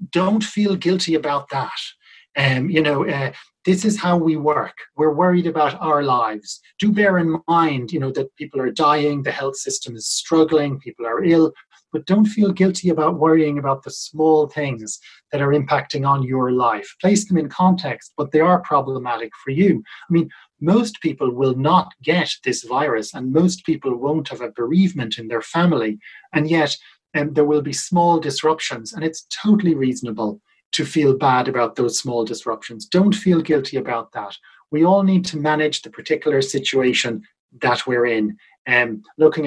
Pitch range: 130-170 Hz